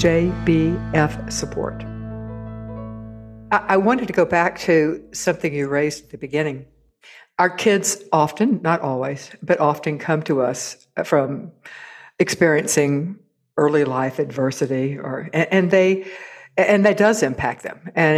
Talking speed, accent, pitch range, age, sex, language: 130 wpm, American, 145-205 Hz, 60-79, female, English